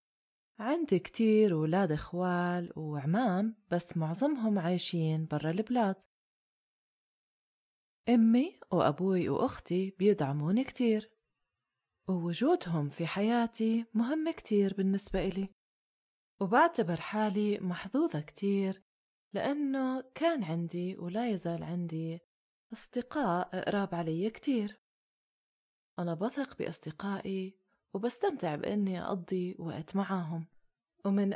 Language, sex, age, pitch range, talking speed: Arabic, female, 20-39, 175-225 Hz, 85 wpm